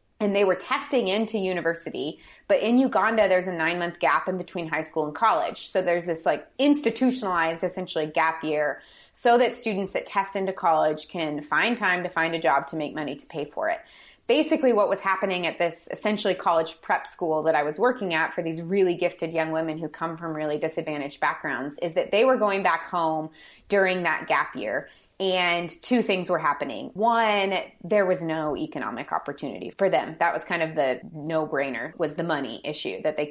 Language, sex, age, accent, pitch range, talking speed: English, female, 20-39, American, 160-200 Hz, 200 wpm